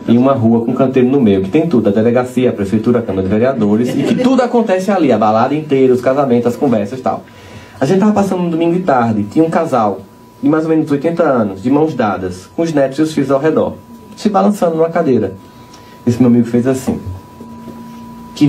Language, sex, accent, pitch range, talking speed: Portuguese, male, Brazilian, 110-170 Hz, 230 wpm